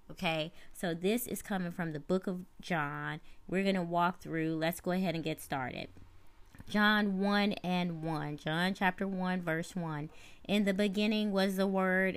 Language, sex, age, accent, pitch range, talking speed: English, female, 20-39, American, 155-180 Hz, 180 wpm